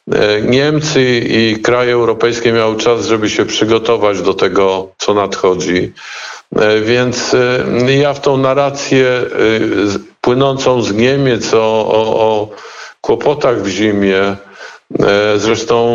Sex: male